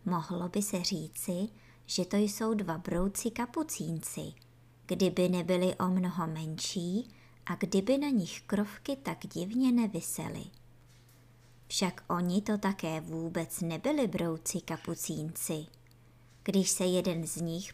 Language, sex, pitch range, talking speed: Czech, male, 160-225 Hz, 120 wpm